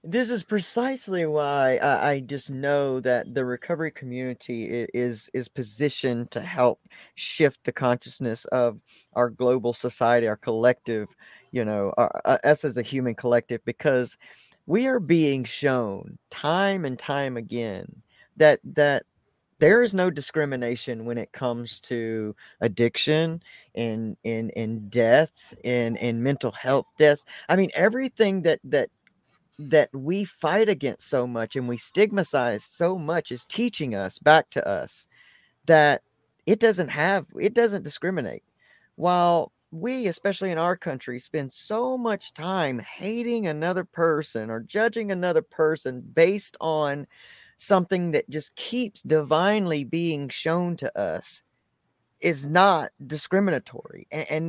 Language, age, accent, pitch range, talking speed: English, 50-69, American, 120-180 Hz, 135 wpm